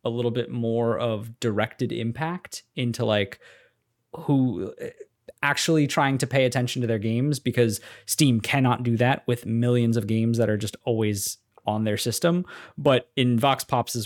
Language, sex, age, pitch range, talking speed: English, male, 20-39, 115-160 Hz, 160 wpm